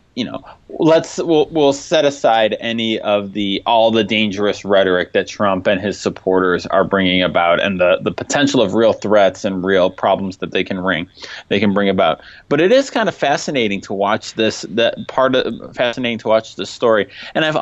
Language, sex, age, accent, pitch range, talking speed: English, male, 20-39, American, 100-135 Hz, 200 wpm